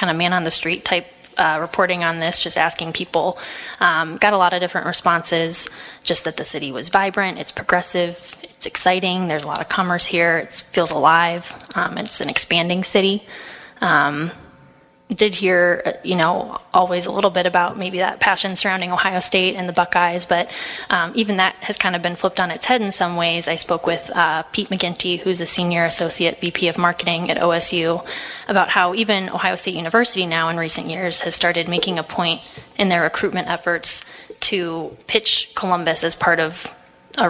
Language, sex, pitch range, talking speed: English, female, 170-190 Hz, 185 wpm